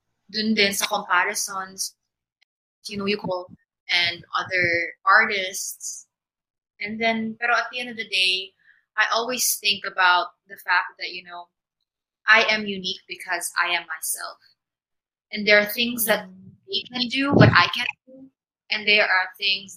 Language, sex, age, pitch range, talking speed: Filipino, female, 20-39, 175-220 Hz, 155 wpm